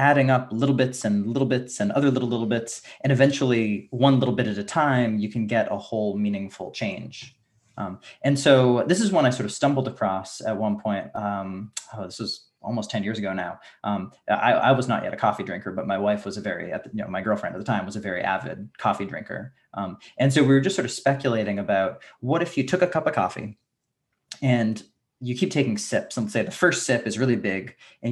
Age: 20-39